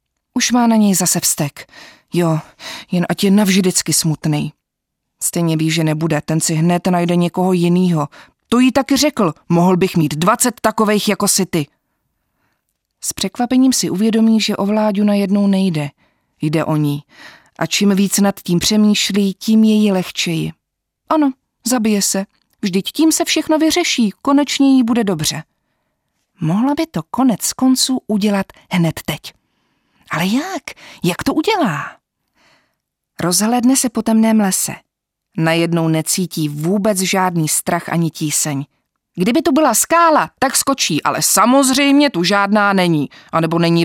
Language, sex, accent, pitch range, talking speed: Czech, female, native, 165-245 Hz, 145 wpm